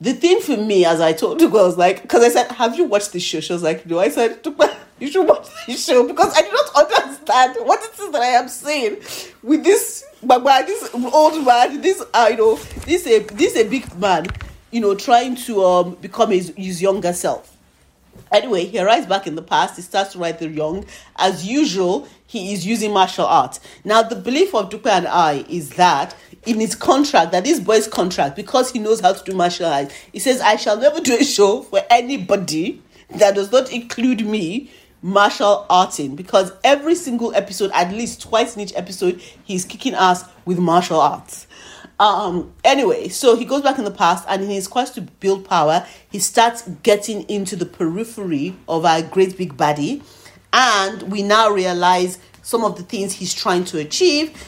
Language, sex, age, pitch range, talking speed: English, female, 40-59, 185-260 Hz, 205 wpm